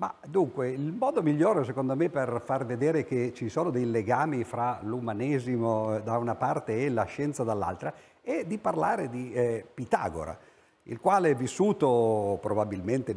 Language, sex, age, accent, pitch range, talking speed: Italian, male, 50-69, native, 120-200 Hz, 160 wpm